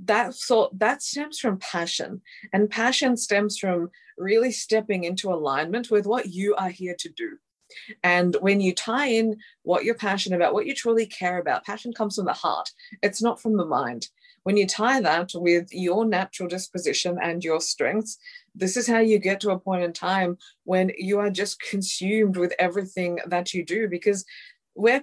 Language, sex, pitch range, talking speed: English, female, 180-230 Hz, 185 wpm